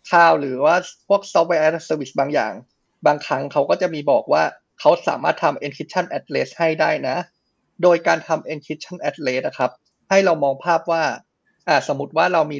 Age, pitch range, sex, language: 20-39, 145-175 Hz, male, Thai